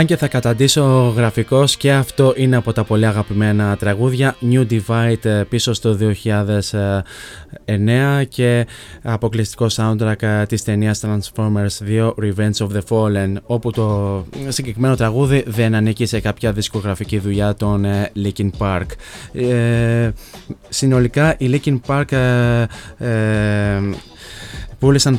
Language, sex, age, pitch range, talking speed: Greek, male, 20-39, 110-125 Hz, 110 wpm